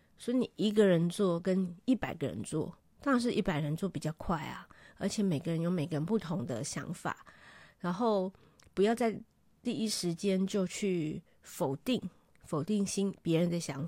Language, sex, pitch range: Chinese, female, 165-200 Hz